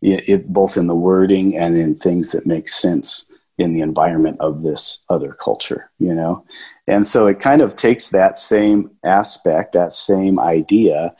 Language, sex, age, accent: English, male, 40-59, American